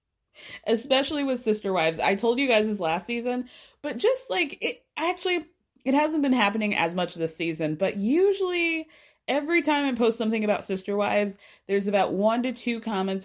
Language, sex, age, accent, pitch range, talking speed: English, female, 20-39, American, 195-325 Hz, 180 wpm